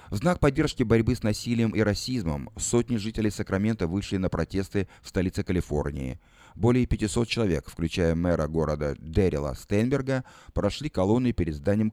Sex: male